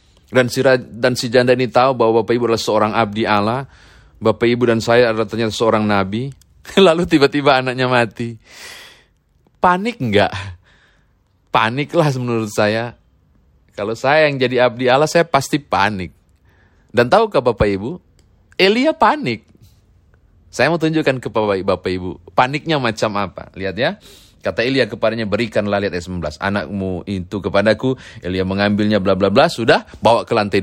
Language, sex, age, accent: Indonesian, male, 30-49, native